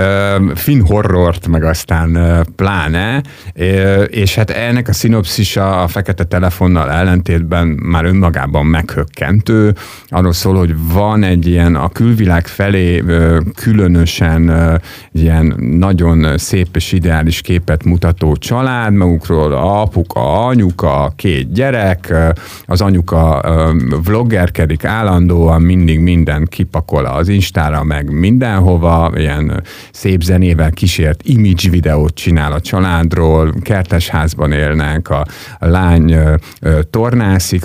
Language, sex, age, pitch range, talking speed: Hungarian, male, 50-69, 80-100 Hz, 110 wpm